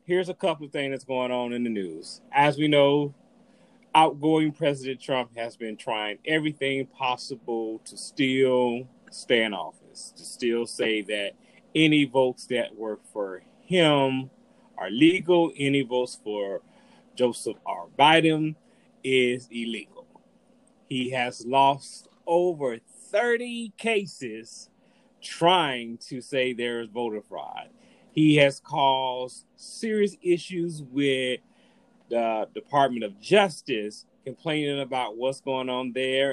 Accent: American